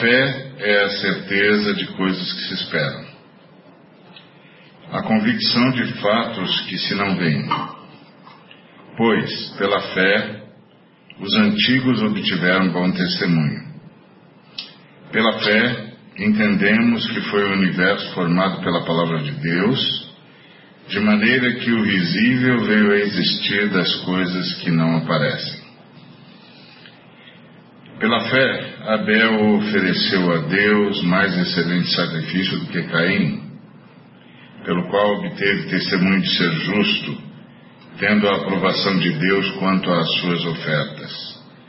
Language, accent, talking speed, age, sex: Portuguese, Brazilian, 115 wpm, 50-69, male